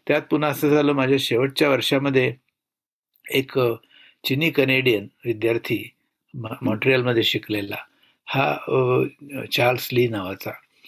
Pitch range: 115-140 Hz